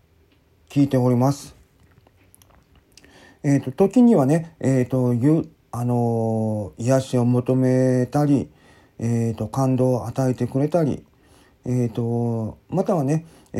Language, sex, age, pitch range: Japanese, male, 40-59, 120-160 Hz